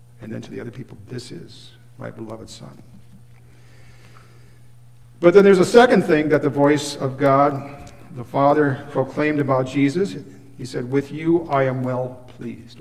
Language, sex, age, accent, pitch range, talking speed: English, male, 50-69, American, 120-140 Hz, 165 wpm